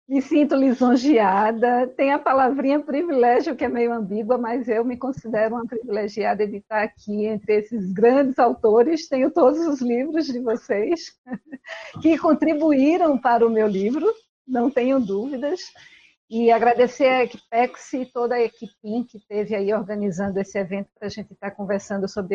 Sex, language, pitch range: female, Portuguese, 200-250 Hz